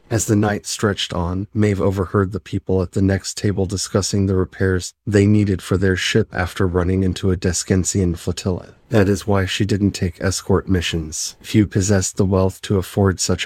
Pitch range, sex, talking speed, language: 90-105 Hz, male, 185 wpm, English